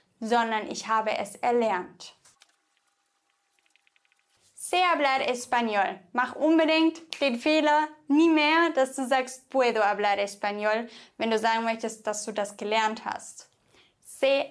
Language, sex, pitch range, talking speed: English, female, 230-290 Hz, 125 wpm